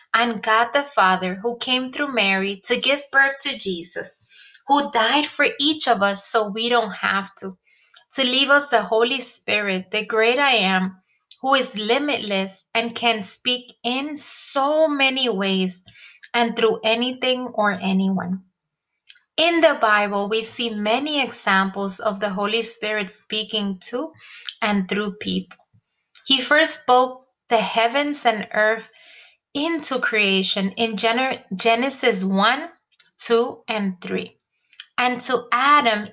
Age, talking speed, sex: 20-39, 140 wpm, female